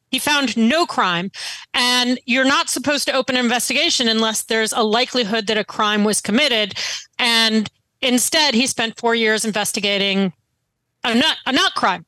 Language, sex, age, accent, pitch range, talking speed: English, female, 40-59, American, 205-260 Hz, 165 wpm